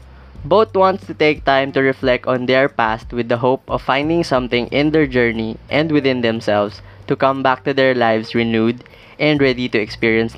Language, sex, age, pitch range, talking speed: English, female, 20-39, 115-145 Hz, 190 wpm